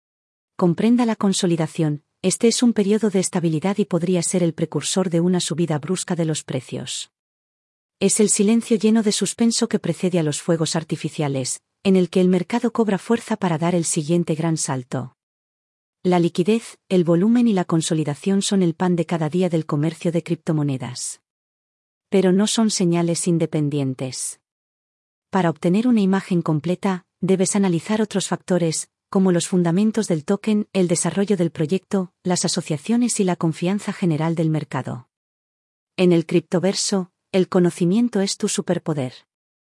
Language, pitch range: Spanish, 165-200 Hz